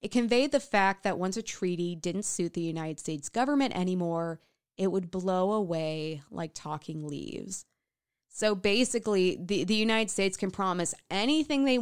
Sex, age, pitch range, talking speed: female, 20-39, 175-215 Hz, 165 wpm